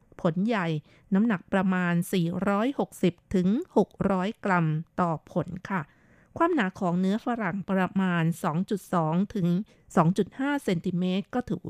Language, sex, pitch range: Thai, female, 180-220 Hz